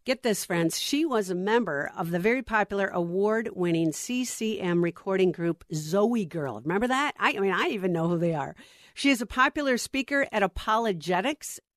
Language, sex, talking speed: English, female, 180 wpm